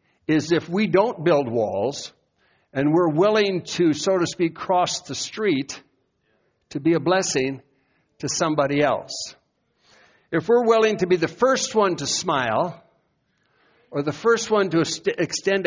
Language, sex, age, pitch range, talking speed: English, male, 60-79, 140-180 Hz, 150 wpm